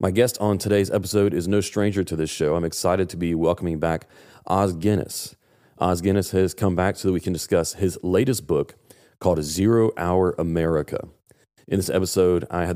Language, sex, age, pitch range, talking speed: English, male, 30-49, 85-100 Hz, 195 wpm